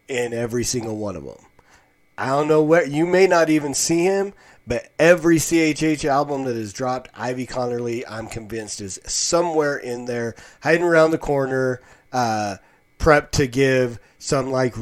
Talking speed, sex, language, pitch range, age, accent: 165 wpm, male, English, 115-145 Hz, 30-49, American